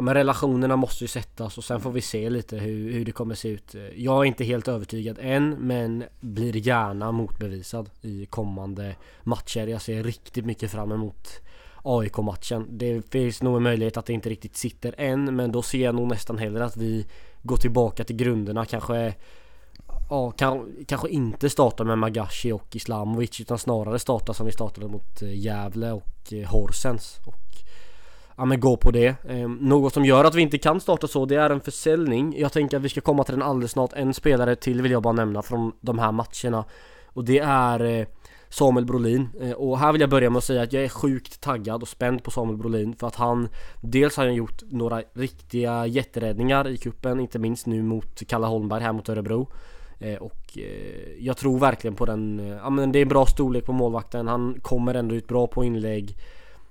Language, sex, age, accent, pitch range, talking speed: English, male, 20-39, Swedish, 110-130 Hz, 195 wpm